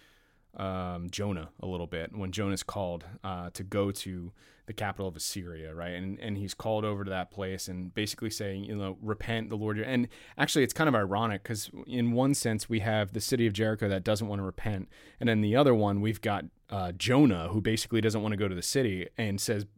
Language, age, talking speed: English, 30-49, 225 wpm